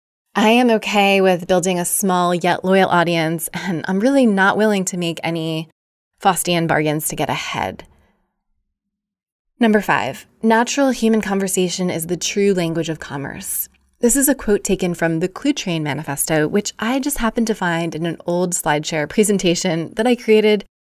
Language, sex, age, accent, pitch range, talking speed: English, female, 20-39, American, 165-210 Hz, 165 wpm